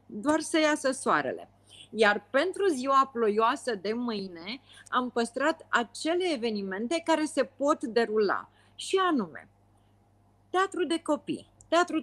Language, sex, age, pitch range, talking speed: Romanian, female, 40-59, 210-300 Hz, 120 wpm